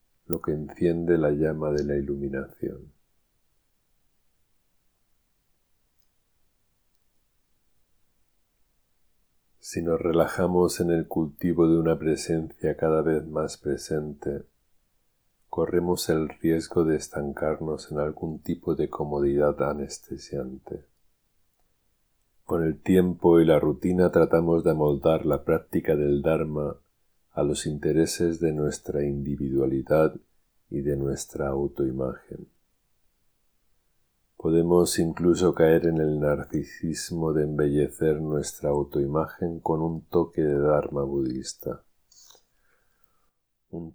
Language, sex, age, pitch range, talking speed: Spanish, male, 50-69, 75-85 Hz, 100 wpm